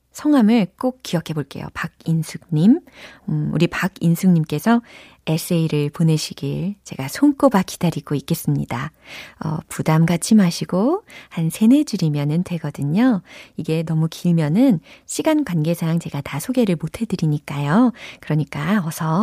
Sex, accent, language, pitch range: female, native, Korean, 160-235 Hz